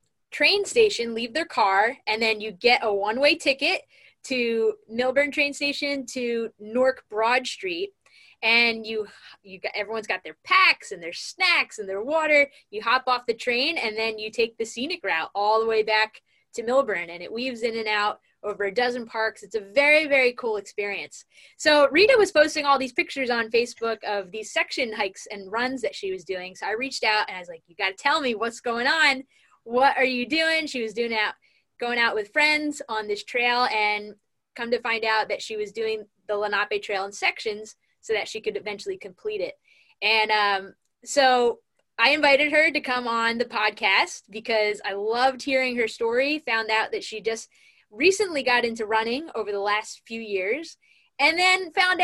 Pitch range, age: 220-300 Hz, 20-39